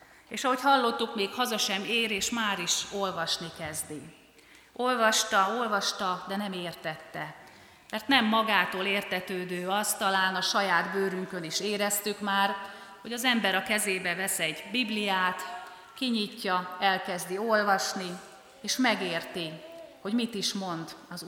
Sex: female